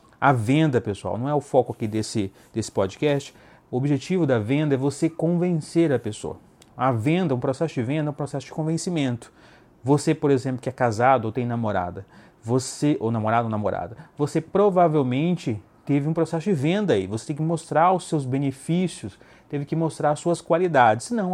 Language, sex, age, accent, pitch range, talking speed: Portuguese, male, 30-49, Brazilian, 125-165 Hz, 190 wpm